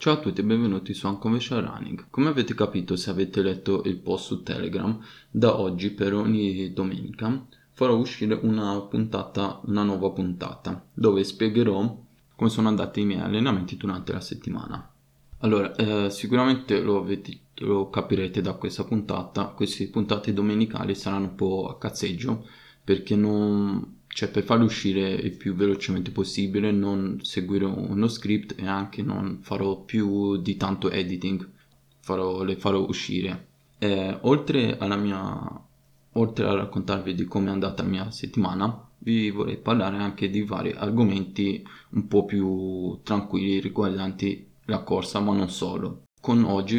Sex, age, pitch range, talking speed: male, 20-39, 95-110 Hz, 150 wpm